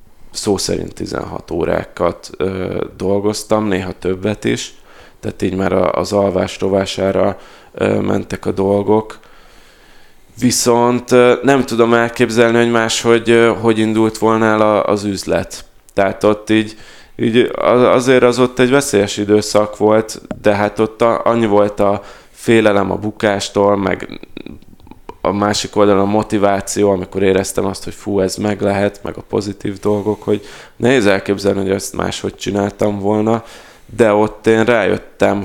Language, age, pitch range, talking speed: Hungarian, 20-39, 100-110 Hz, 130 wpm